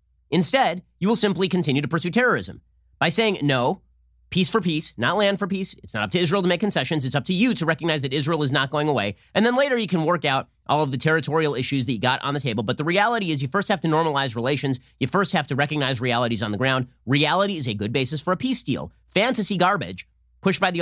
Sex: male